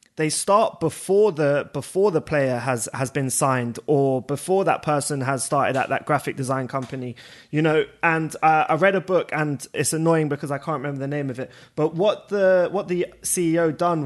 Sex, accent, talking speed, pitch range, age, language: male, British, 215 wpm, 145-180 Hz, 20-39, English